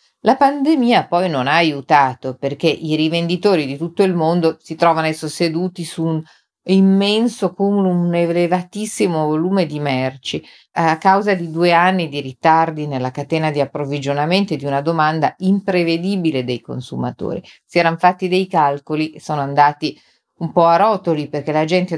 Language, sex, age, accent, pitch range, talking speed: Italian, female, 40-59, native, 140-175 Hz, 160 wpm